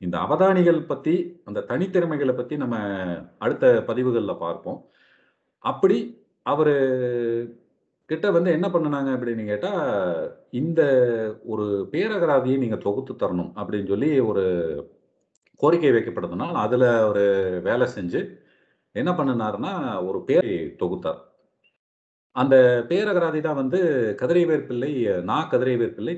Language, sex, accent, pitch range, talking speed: Tamil, male, native, 115-170 Hz, 105 wpm